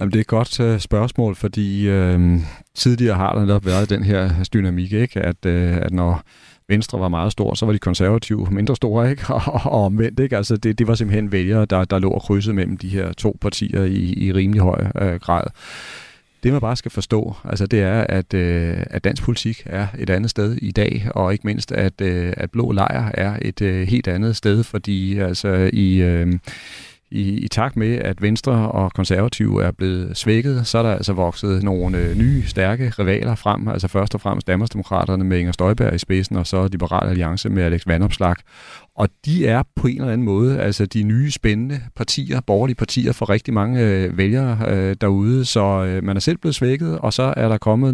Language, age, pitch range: Danish, 40-59, 95-115 Hz